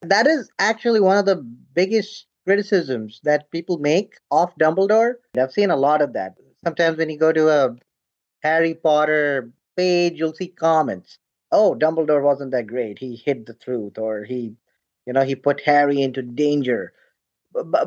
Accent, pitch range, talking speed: Indian, 150-195 Hz, 170 wpm